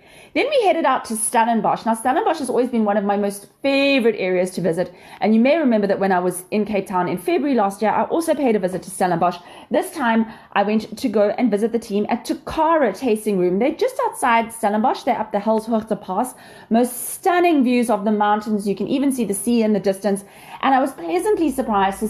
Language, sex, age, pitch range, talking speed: English, female, 30-49, 200-250 Hz, 230 wpm